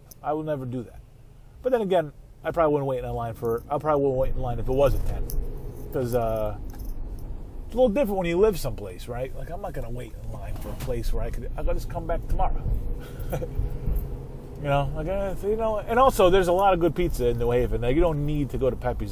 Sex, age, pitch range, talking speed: male, 30-49, 120-145 Hz, 255 wpm